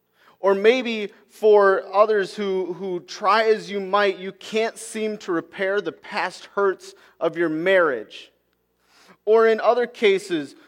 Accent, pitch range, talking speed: American, 160-210 Hz, 140 wpm